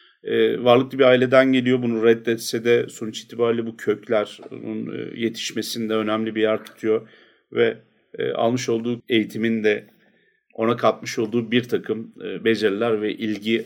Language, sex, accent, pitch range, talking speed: English, male, Turkish, 105-125 Hz, 145 wpm